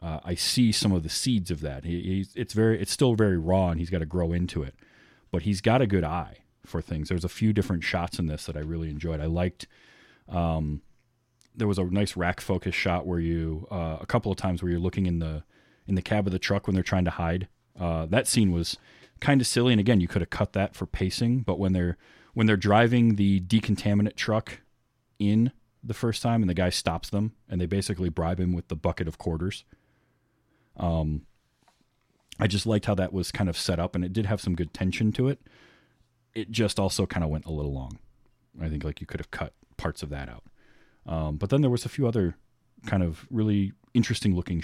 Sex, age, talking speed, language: male, 30-49, 235 wpm, English